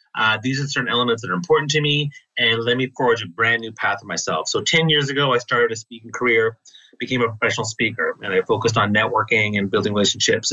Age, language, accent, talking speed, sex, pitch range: 30-49, English, American, 235 wpm, male, 115-150 Hz